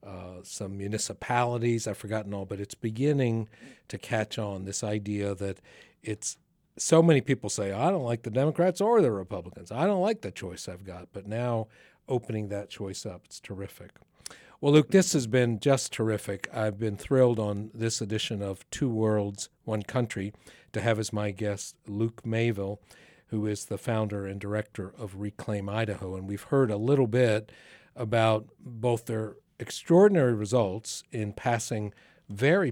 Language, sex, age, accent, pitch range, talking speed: English, male, 50-69, American, 100-125 Hz, 165 wpm